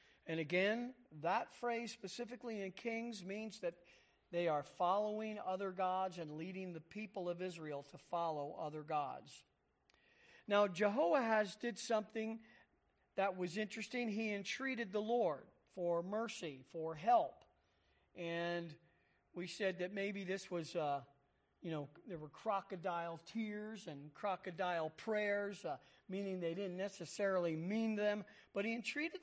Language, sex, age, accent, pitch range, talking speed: English, male, 40-59, American, 170-225 Hz, 135 wpm